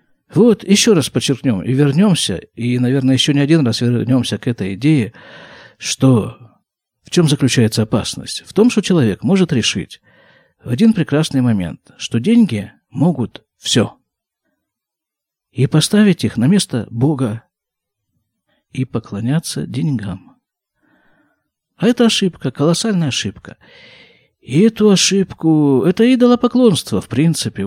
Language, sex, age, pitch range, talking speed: Russian, male, 50-69, 115-175 Hz, 120 wpm